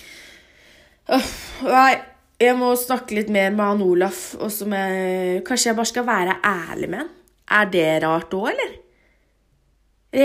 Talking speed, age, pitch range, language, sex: 145 wpm, 20-39, 175-220 Hz, English, female